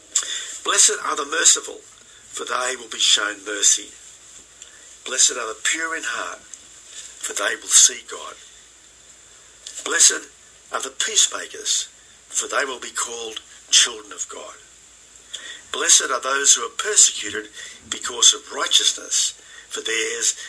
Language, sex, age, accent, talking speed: English, male, 50-69, Australian, 130 wpm